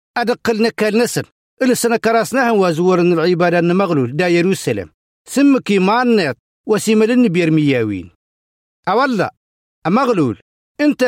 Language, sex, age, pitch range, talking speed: Arabic, male, 50-69, 150-225 Hz, 105 wpm